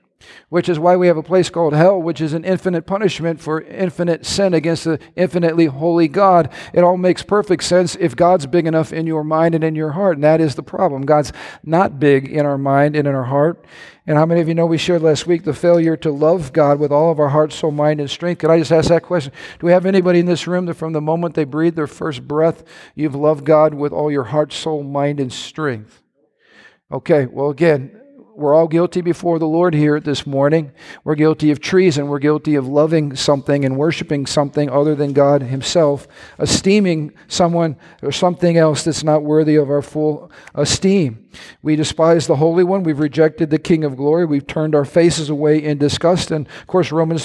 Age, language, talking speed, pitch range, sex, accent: 50-69, English, 220 wpm, 150-170 Hz, male, American